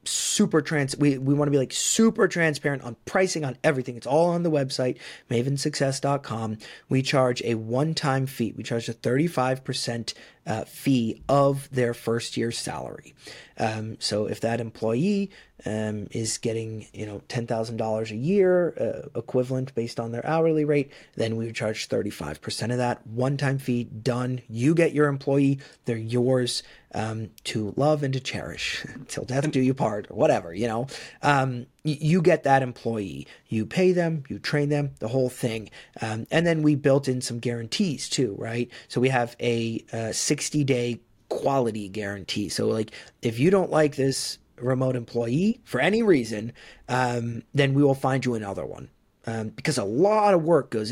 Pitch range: 115-145 Hz